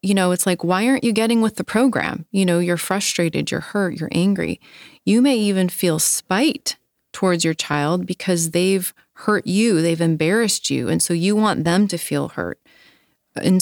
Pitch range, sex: 160-190 Hz, female